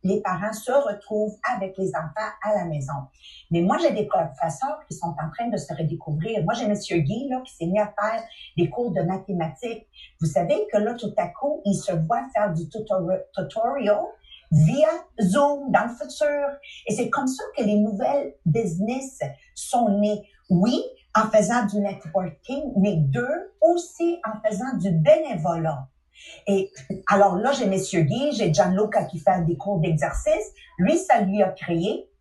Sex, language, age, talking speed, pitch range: female, English, 50-69, 175 wpm, 190-270 Hz